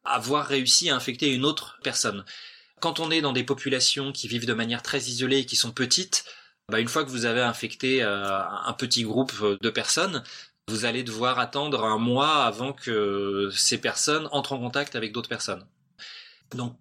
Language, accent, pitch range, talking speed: French, French, 115-140 Hz, 185 wpm